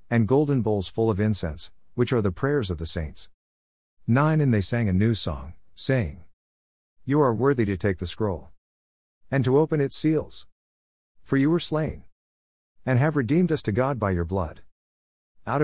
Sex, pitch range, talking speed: male, 85-120 Hz, 180 wpm